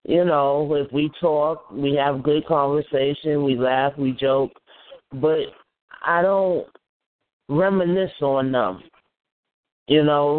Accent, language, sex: American, English, male